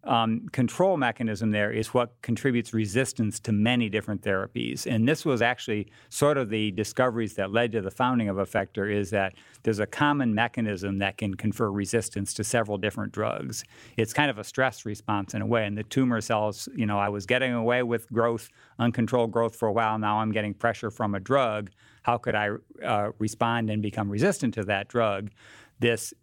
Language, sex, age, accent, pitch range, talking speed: English, male, 50-69, American, 105-120 Hz, 195 wpm